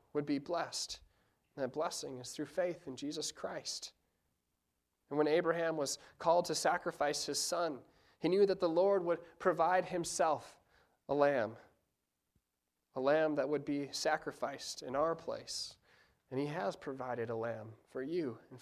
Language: English